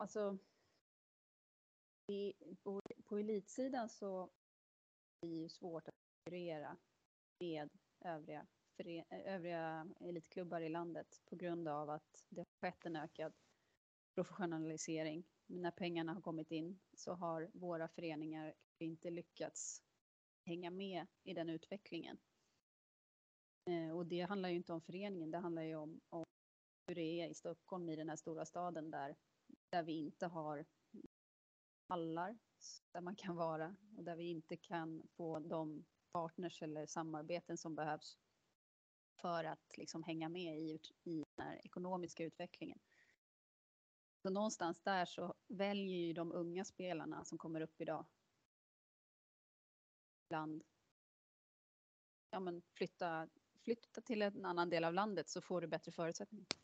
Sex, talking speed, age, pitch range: female, 135 wpm, 30-49, 160-185 Hz